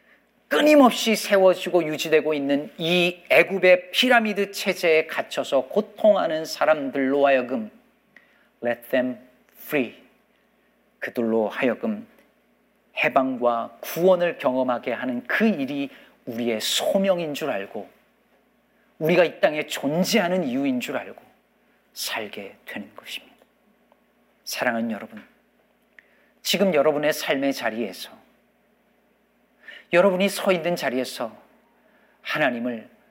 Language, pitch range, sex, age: Korean, 135-220 Hz, male, 40-59